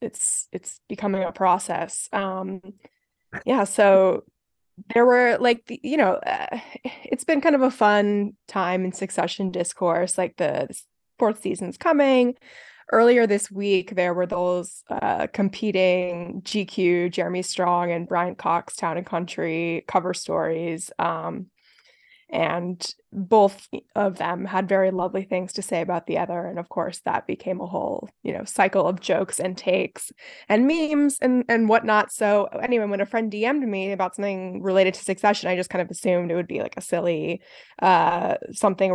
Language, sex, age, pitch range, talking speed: English, female, 20-39, 180-215 Hz, 165 wpm